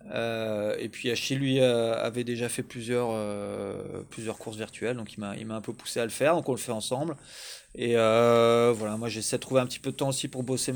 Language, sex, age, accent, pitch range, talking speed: French, male, 20-39, French, 110-130 Hz, 250 wpm